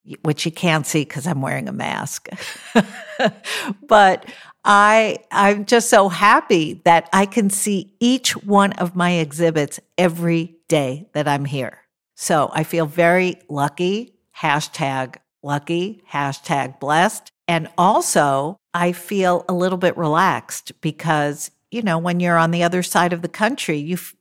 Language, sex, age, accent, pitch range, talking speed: English, female, 50-69, American, 160-200 Hz, 150 wpm